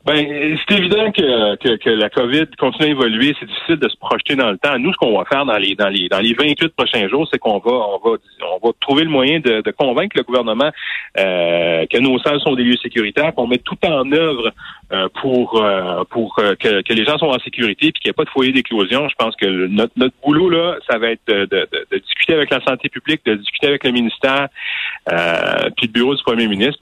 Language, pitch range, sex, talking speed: French, 115-165 Hz, male, 250 wpm